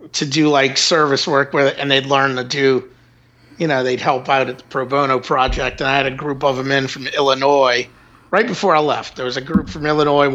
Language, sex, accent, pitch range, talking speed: English, male, American, 135-185 Hz, 245 wpm